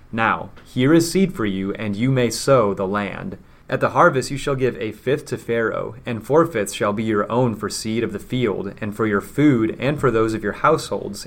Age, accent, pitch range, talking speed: 30-49, American, 100-125 Hz, 235 wpm